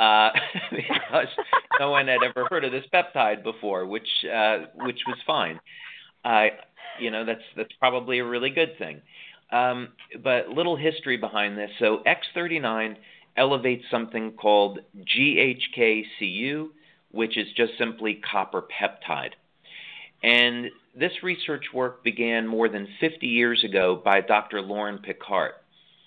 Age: 40-59